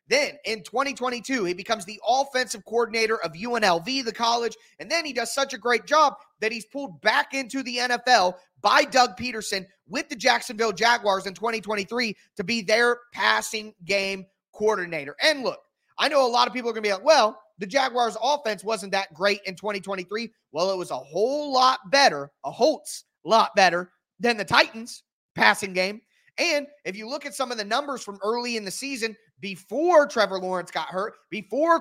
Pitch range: 195-265 Hz